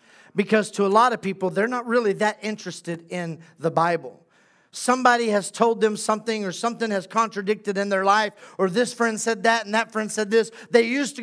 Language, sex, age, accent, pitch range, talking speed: English, male, 40-59, American, 220-260 Hz, 210 wpm